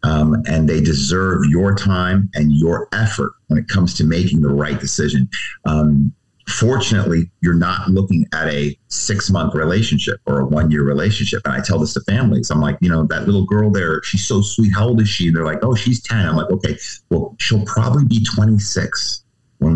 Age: 50-69